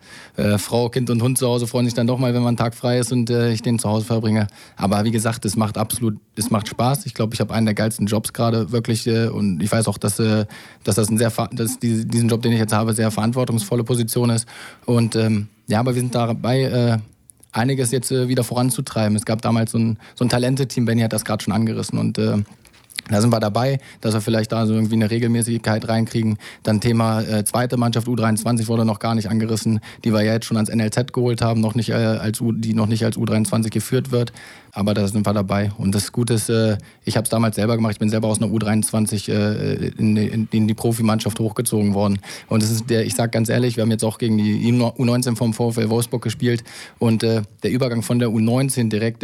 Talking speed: 240 wpm